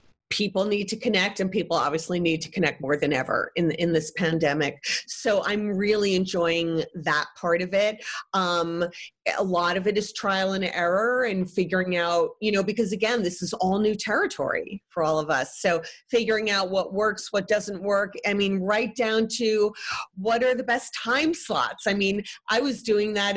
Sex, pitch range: female, 170-210 Hz